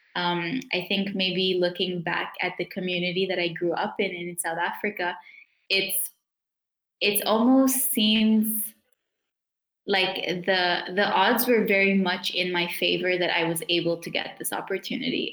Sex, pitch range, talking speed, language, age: female, 175-200 Hz, 155 wpm, English, 10-29